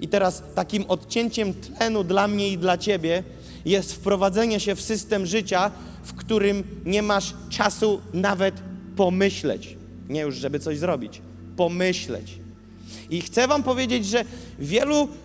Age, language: 30-49, Polish